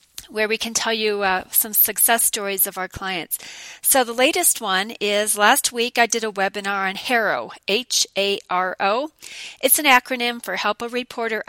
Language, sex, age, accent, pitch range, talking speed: English, female, 40-59, American, 195-240 Hz, 170 wpm